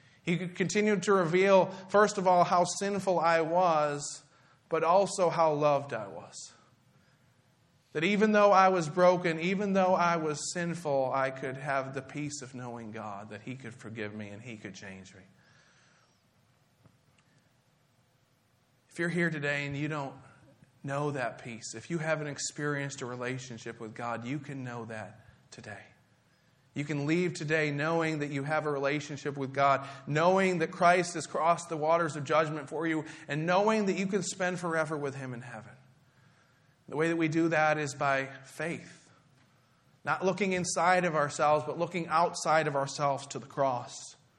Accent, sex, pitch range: American, male, 130-165 Hz